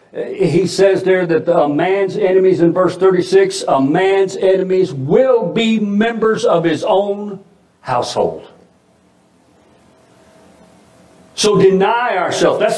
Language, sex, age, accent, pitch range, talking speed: English, male, 60-79, American, 175-255 Hz, 115 wpm